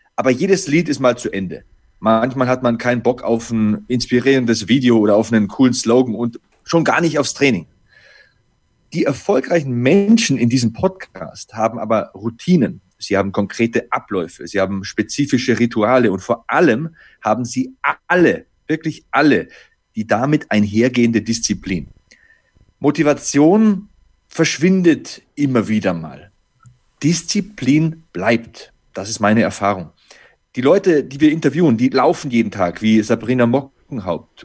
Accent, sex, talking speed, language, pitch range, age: German, male, 140 wpm, German, 115-160 Hz, 30-49